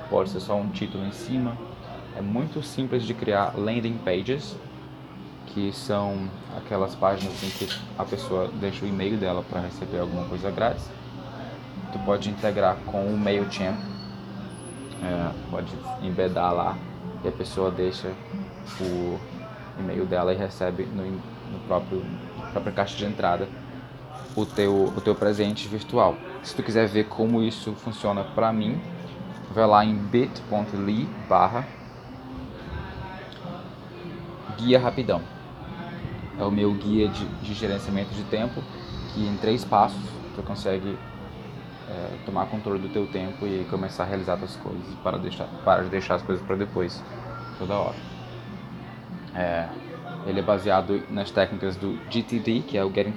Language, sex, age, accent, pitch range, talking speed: Portuguese, male, 20-39, Brazilian, 95-110 Hz, 140 wpm